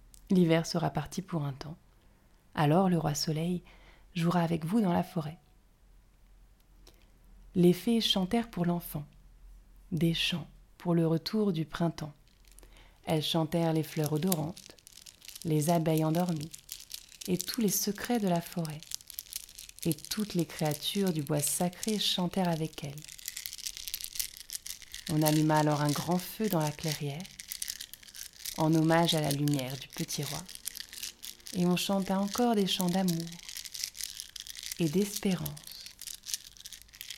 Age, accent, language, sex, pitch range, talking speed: 30-49, French, French, female, 150-180 Hz, 130 wpm